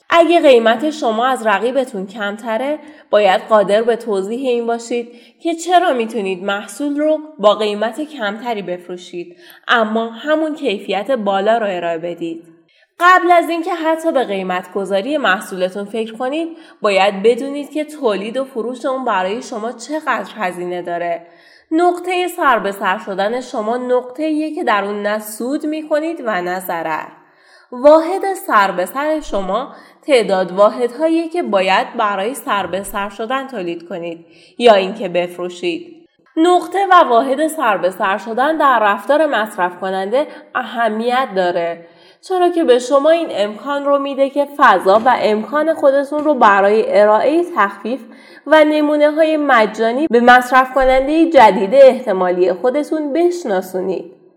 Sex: female